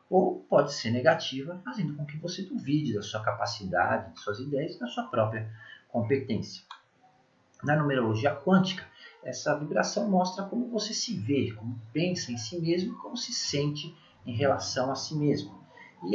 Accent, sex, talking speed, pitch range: Brazilian, male, 165 wpm, 120-180 Hz